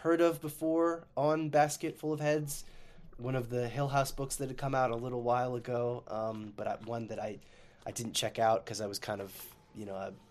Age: 20-39